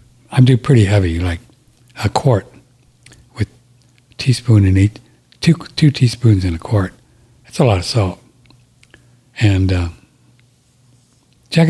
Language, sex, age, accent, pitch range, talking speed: English, male, 60-79, American, 115-130 Hz, 130 wpm